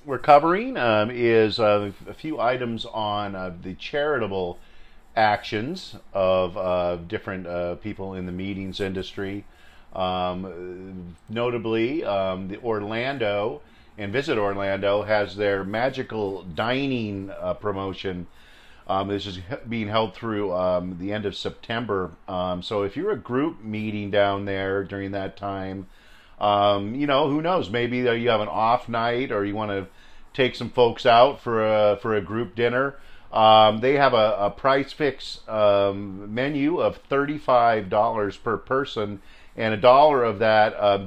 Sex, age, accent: male, 40-59, American